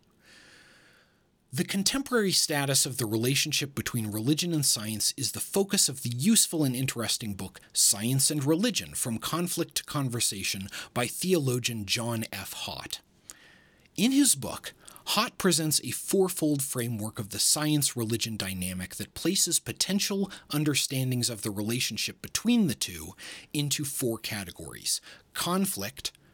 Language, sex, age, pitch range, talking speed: English, male, 30-49, 105-155 Hz, 130 wpm